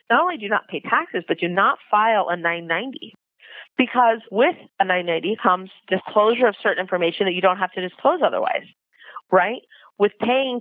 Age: 40-59